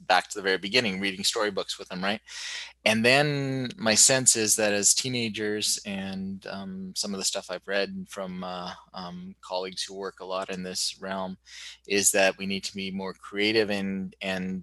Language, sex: English, male